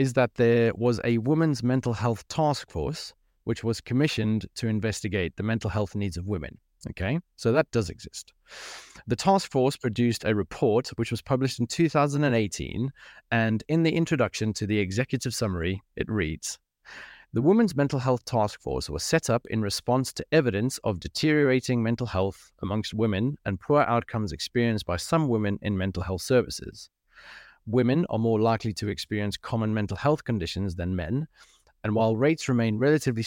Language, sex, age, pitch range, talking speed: English, male, 30-49, 100-130 Hz, 170 wpm